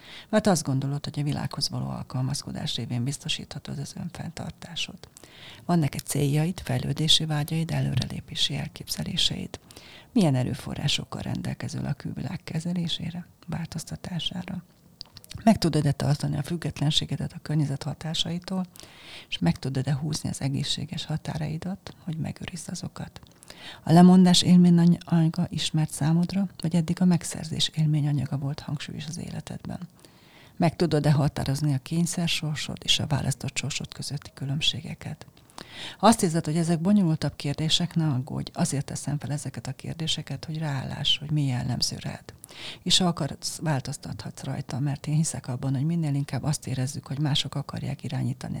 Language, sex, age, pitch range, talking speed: Hungarian, female, 40-59, 140-170 Hz, 135 wpm